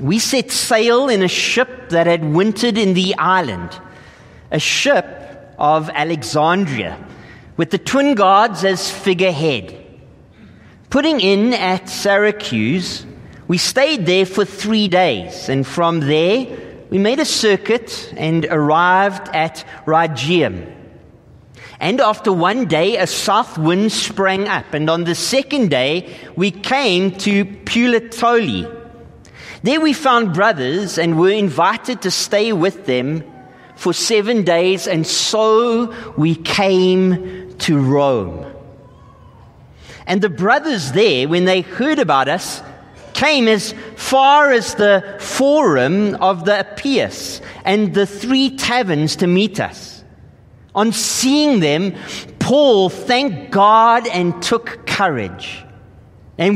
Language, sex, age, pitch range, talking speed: English, male, 40-59, 170-230 Hz, 125 wpm